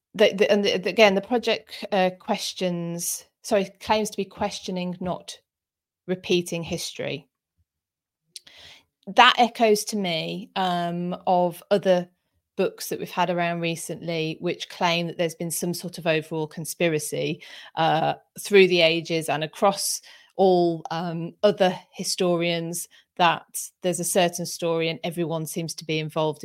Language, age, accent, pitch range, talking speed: English, 30-49, British, 165-200 Hz, 140 wpm